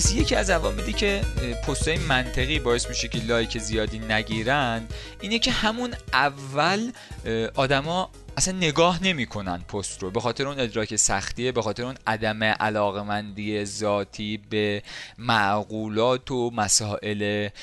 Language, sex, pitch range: Persian, male, 105-140 Hz